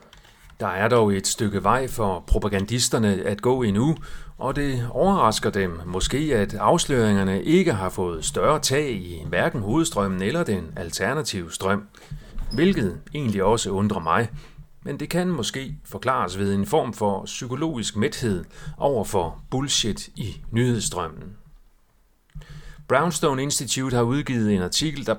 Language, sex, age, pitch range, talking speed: Danish, male, 40-59, 100-150 Hz, 140 wpm